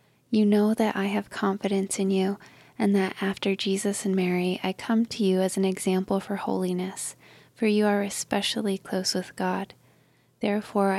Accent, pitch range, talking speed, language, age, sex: American, 190-210 Hz, 170 wpm, English, 20-39, female